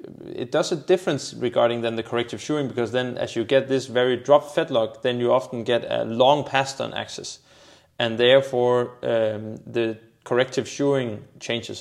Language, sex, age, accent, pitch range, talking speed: Danish, male, 20-39, native, 110-125 Hz, 175 wpm